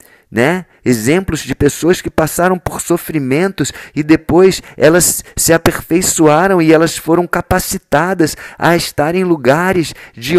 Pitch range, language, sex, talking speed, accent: 125-160 Hz, Portuguese, male, 125 wpm, Brazilian